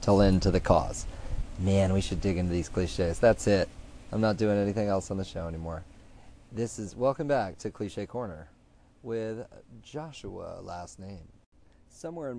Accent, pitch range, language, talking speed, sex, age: American, 95-125 Hz, English, 170 wpm, male, 30-49